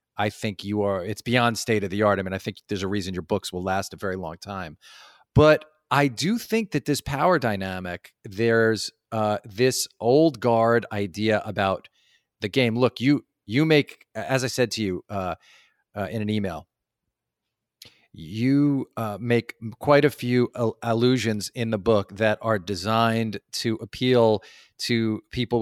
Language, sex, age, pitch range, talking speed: English, male, 40-59, 105-130 Hz, 170 wpm